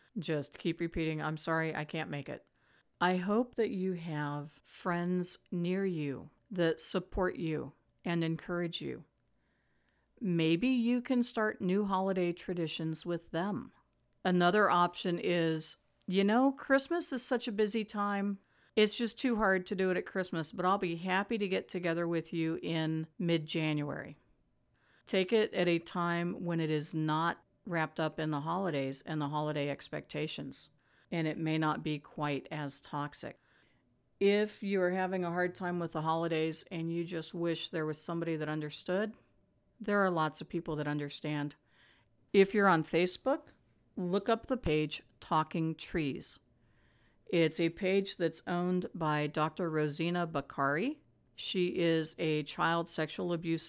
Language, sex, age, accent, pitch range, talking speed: English, female, 50-69, American, 155-190 Hz, 155 wpm